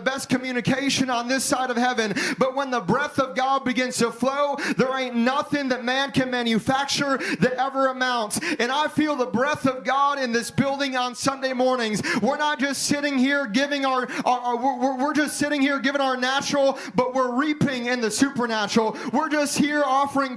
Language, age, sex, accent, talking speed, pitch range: English, 30-49, male, American, 195 wpm, 235-275 Hz